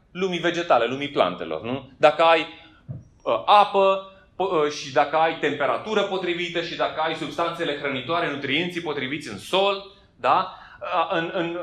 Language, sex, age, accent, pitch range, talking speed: Romanian, male, 30-49, native, 155-205 Hz, 145 wpm